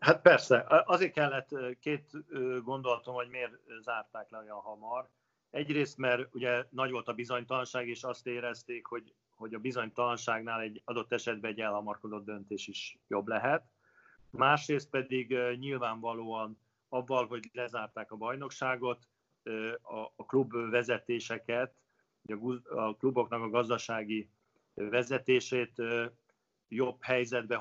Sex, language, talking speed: male, Hungarian, 115 wpm